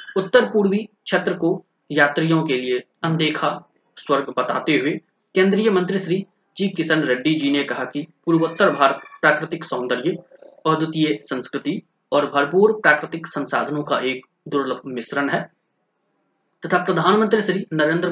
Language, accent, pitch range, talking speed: Hindi, native, 140-180 Hz, 130 wpm